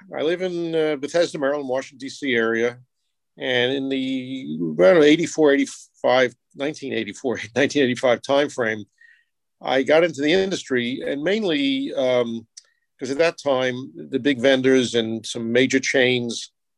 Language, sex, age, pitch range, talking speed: English, male, 50-69, 120-145 Hz, 120 wpm